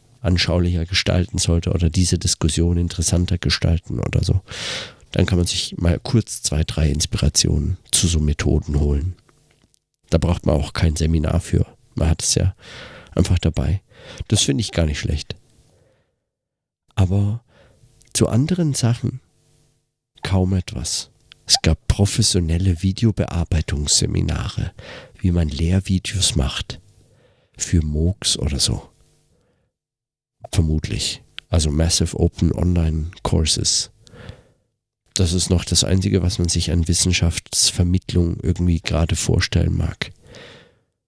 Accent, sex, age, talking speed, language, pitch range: German, male, 50-69, 115 wpm, German, 85-115 Hz